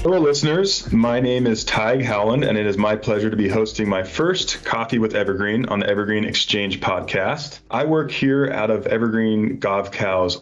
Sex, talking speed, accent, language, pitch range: male, 185 wpm, American, English, 100-125 Hz